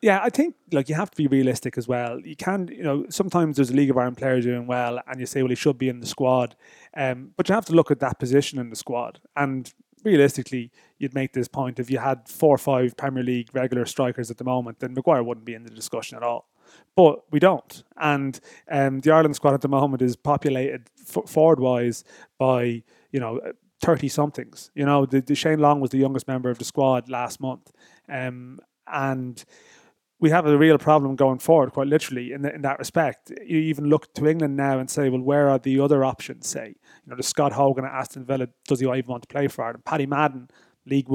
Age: 20-39